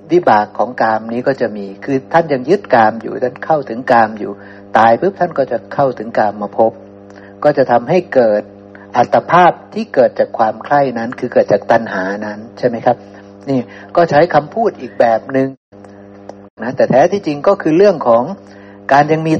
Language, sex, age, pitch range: Thai, male, 60-79, 105-160 Hz